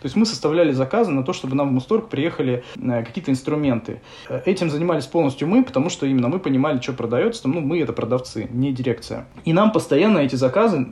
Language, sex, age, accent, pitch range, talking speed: Russian, male, 20-39, native, 130-170 Hz, 200 wpm